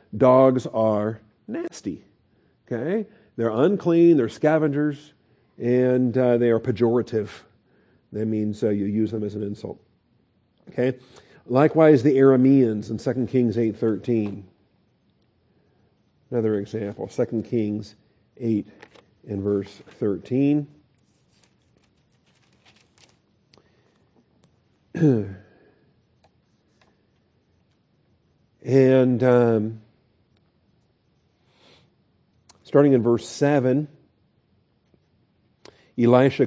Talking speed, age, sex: 75 wpm, 50-69, male